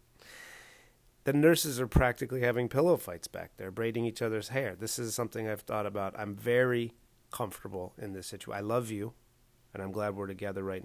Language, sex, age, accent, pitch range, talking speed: English, male, 30-49, American, 105-130 Hz, 190 wpm